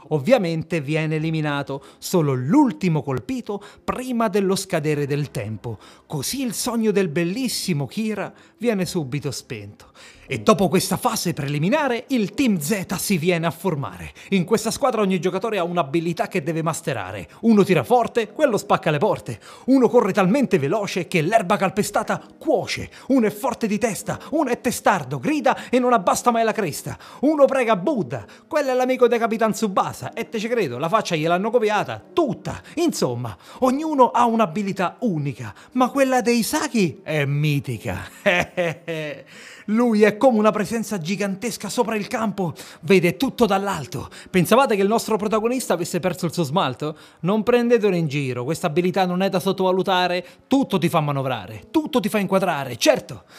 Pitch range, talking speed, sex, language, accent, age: 165-235 Hz, 160 wpm, male, Italian, native, 30-49